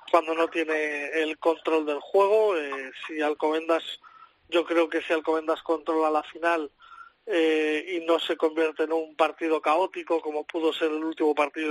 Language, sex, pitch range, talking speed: Spanish, male, 150-170 Hz, 170 wpm